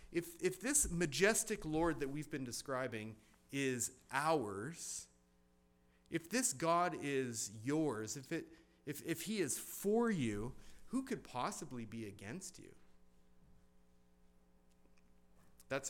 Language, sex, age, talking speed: English, male, 30-49, 115 wpm